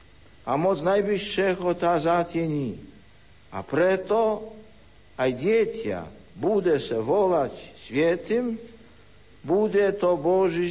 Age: 60-79